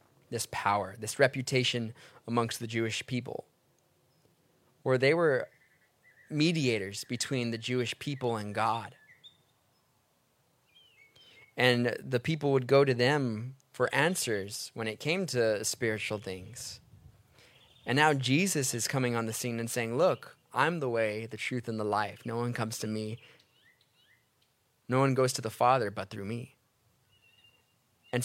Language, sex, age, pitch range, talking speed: English, male, 20-39, 115-135 Hz, 140 wpm